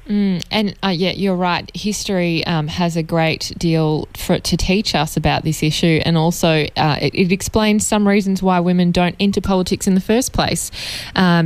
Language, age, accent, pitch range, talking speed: English, 20-39, Australian, 165-195 Hz, 190 wpm